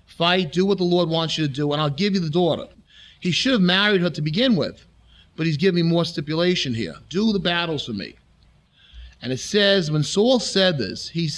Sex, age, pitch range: male, 30-49, 145-200 Hz